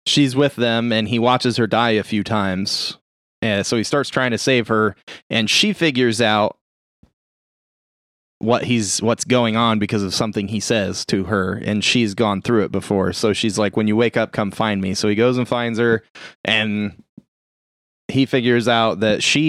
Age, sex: 20-39, male